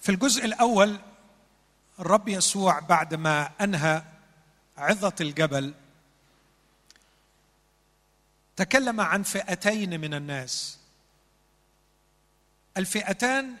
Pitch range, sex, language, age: 160-215 Hz, male, Arabic, 50-69